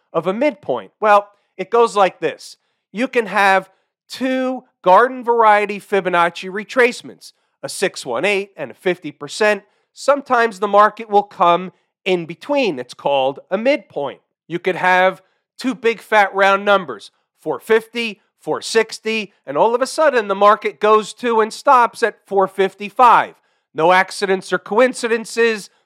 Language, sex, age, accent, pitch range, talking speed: English, male, 40-59, American, 185-230 Hz, 135 wpm